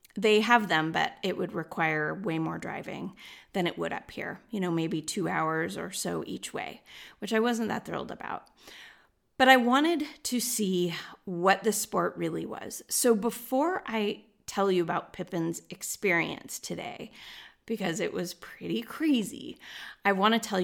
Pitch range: 175-215 Hz